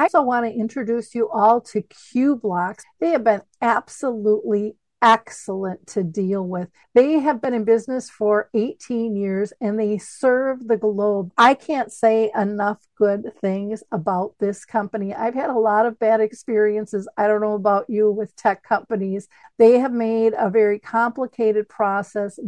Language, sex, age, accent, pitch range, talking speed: English, female, 50-69, American, 210-240 Hz, 165 wpm